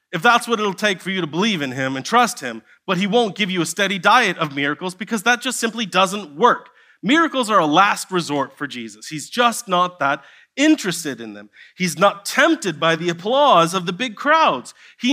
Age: 30-49